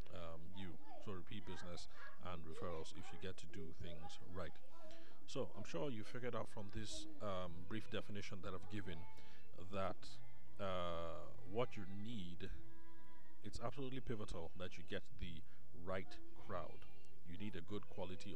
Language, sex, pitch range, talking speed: English, male, 90-105 Hz, 150 wpm